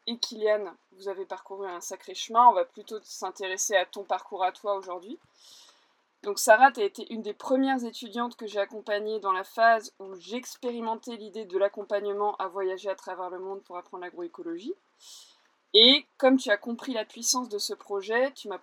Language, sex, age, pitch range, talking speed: French, female, 20-39, 195-260 Hz, 190 wpm